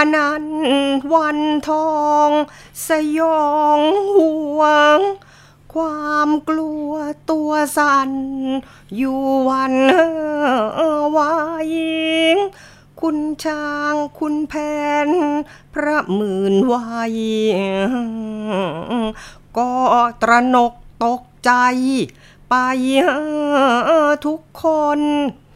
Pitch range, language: 250-305 Hz, Thai